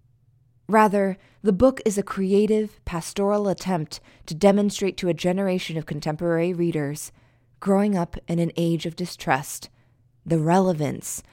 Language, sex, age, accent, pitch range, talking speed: English, female, 20-39, American, 125-190 Hz, 130 wpm